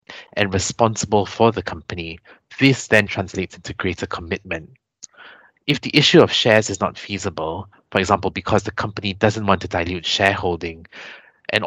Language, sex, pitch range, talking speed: English, male, 90-110 Hz, 155 wpm